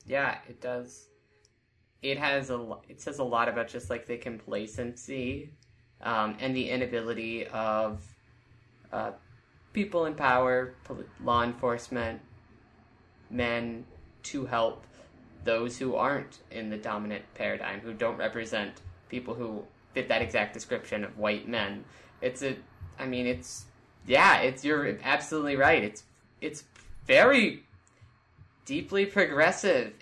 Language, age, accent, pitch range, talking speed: English, 20-39, American, 115-135 Hz, 130 wpm